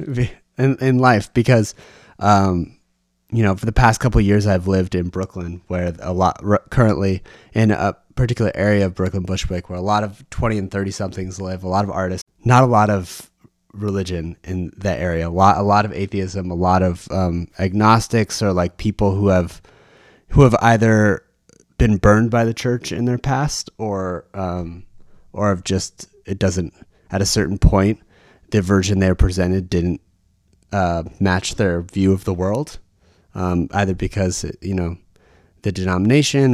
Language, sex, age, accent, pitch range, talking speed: English, male, 30-49, American, 95-120 Hz, 175 wpm